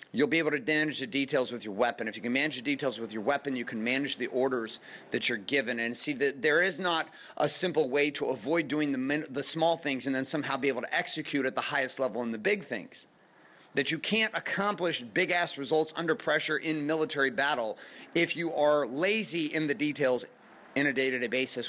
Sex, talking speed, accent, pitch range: male, 220 wpm, American, 150-205 Hz